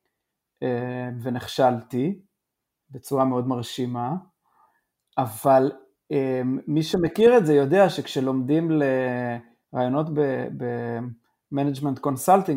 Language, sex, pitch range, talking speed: Hebrew, male, 130-170 Hz, 60 wpm